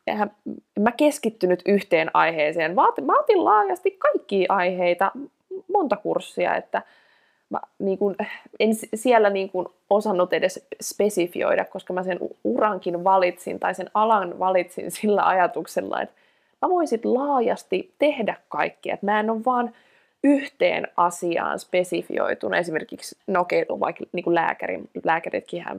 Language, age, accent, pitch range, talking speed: Finnish, 20-39, native, 180-240 Hz, 120 wpm